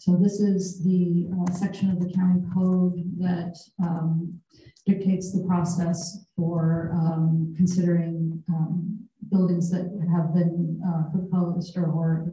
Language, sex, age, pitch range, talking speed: English, female, 40-59, 175-190 Hz, 130 wpm